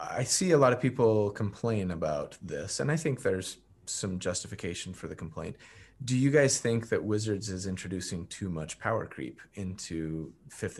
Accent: American